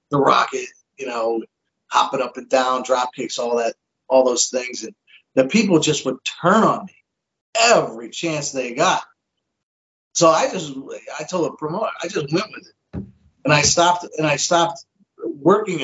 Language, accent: English, American